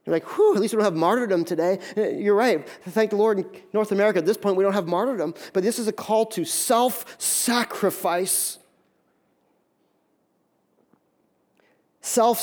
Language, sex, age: English, male, 30-49